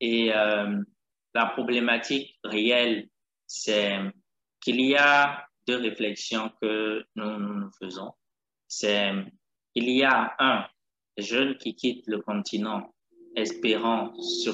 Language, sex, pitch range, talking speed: French, male, 105-125 Hz, 115 wpm